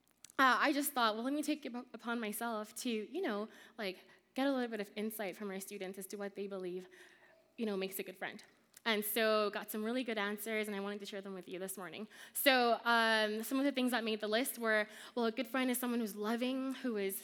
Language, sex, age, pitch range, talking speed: English, female, 20-39, 210-270 Hz, 250 wpm